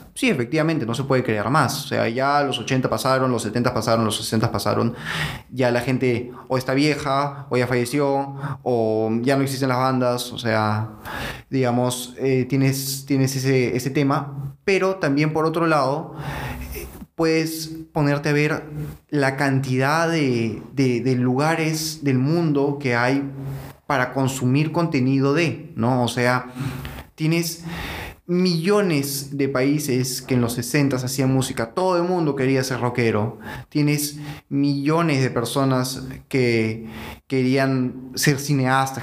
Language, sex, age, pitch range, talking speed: Spanish, male, 20-39, 125-145 Hz, 145 wpm